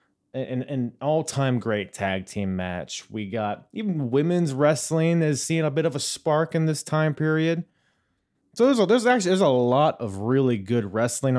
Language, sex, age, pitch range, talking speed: English, male, 30-49, 110-145 Hz, 180 wpm